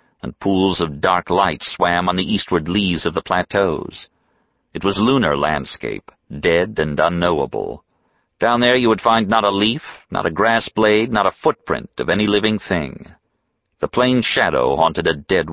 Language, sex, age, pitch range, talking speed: English, male, 50-69, 85-105 Hz, 175 wpm